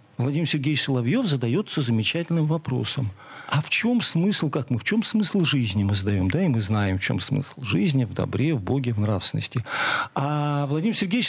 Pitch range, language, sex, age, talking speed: 135-205 Hz, Russian, male, 40-59, 185 wpm